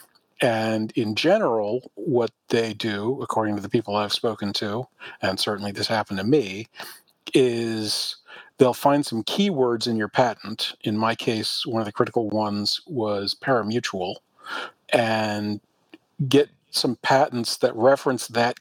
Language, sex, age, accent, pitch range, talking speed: English, male, 40-59, American, 105-125 Hz, 140 wpm